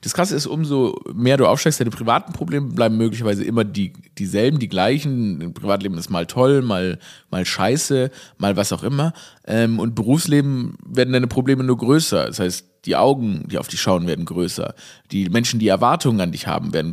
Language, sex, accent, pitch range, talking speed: German, male, German, 115-155 Hz, 195 wpm